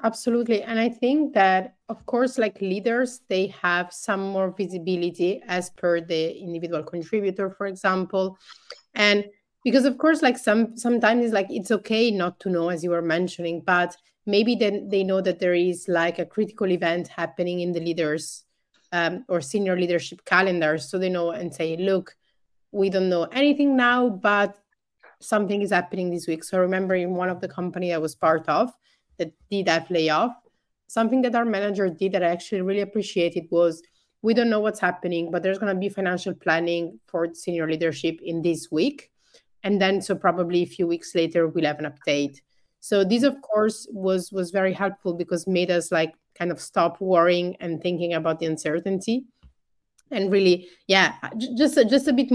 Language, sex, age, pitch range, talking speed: English, female, 30-49, 170-210 Hz, 185 wpm